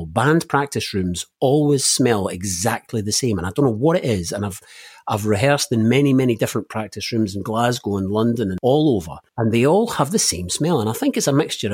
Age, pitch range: 40-59, 95-120 Hz